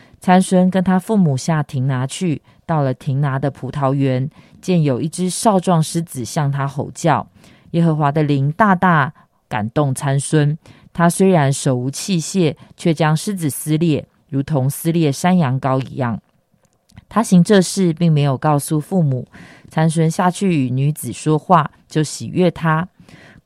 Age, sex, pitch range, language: 20-39, female, 135-175 Hz, Chinese